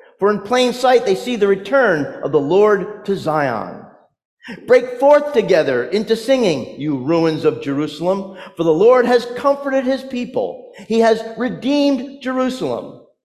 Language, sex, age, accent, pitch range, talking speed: English, male, 40-59, American, 175-250 Hz, 150 wpm